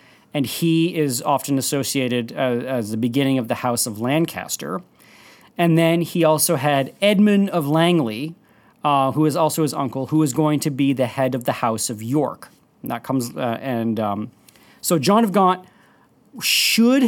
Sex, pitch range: male, 130-170 Hz